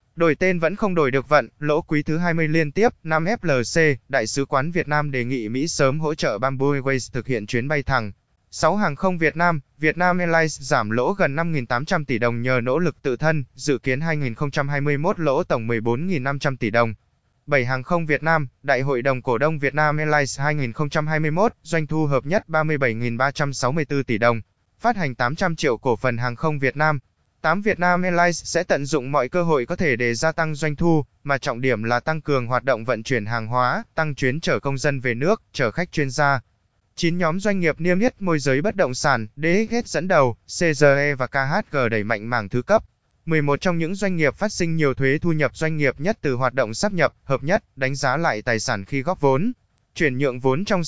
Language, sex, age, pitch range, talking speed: Vietnamese, male, 20-39, 130-165 Hz, 215 wpm